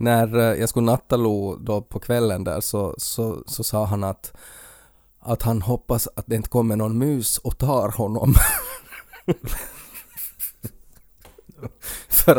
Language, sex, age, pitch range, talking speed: Swedish, male, 20-39, 100-115 Hz, 135 wpm